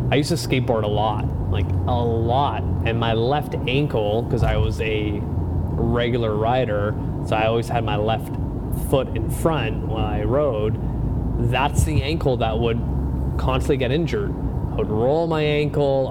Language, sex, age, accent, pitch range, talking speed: English, male, 30-49, American, 105-125 Hz, 165 wpm